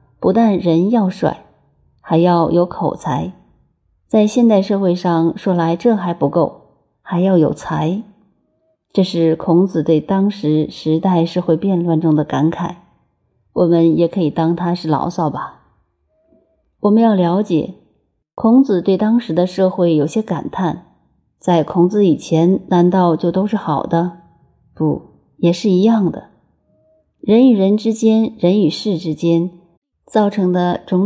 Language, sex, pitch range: Chinese, female, 165-205 Hz